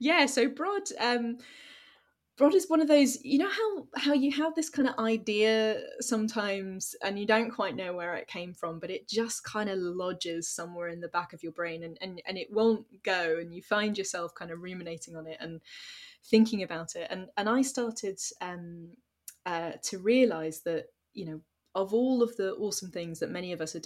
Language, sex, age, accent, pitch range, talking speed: English, female, 10-29, British, 165-225 Hz, 210 wpm